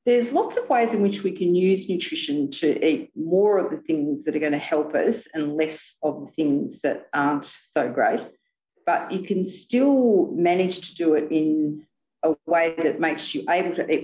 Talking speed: 205 wpm